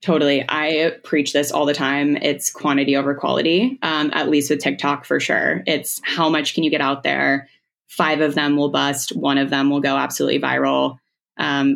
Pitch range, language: 140-155 Hz, English